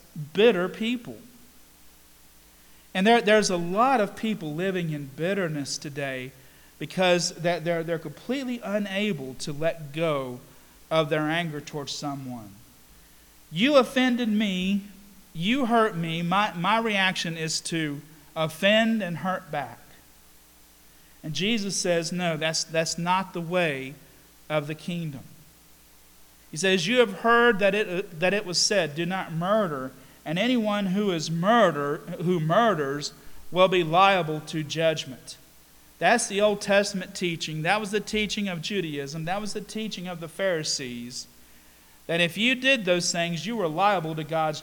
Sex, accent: male, American